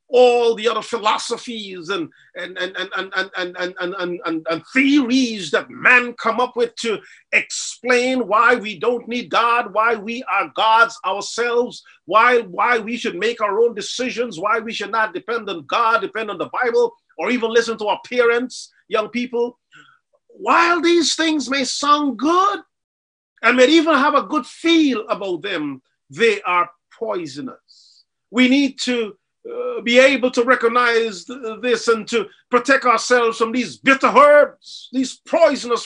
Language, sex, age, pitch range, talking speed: English, male, 40-59, 225-275 Hz, 145 wpm